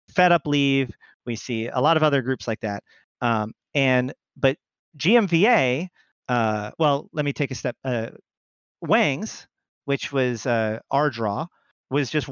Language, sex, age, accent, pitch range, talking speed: English, male, 40-59, American, 120-150 Hz, 155 wpm